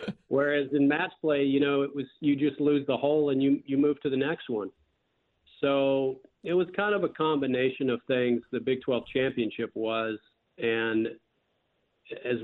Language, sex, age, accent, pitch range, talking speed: English, male, 40-59, American, 120-140 Hz, 180 wpm